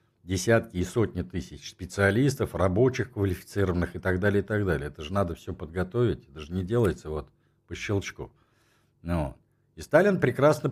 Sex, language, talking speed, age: male, Russian, 160 wpm, 50-69